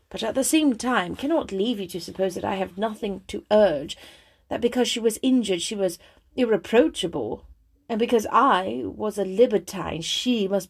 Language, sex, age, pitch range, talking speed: English, female, 30-49, 185-240 Hz, 180 wpm